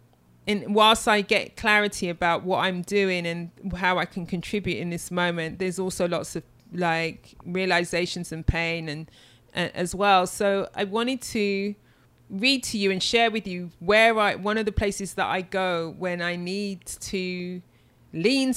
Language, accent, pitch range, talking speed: English, British, 170-195 Hz, 175 wpm